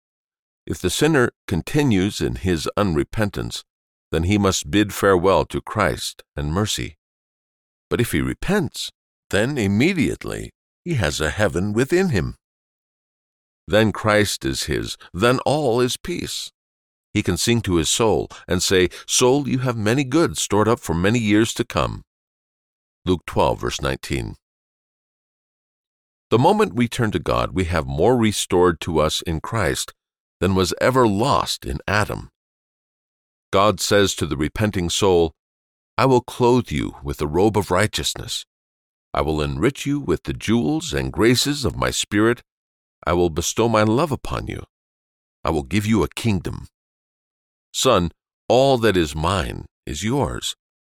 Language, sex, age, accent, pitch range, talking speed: English, male, 50-69, American, 75-110 Hz, 150 wpm